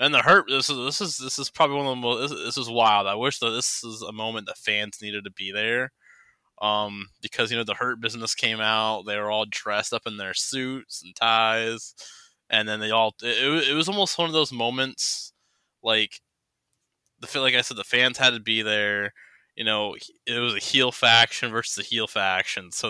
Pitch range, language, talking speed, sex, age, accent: 100-120 Hz, English, 225 wpm, male, 20-39, American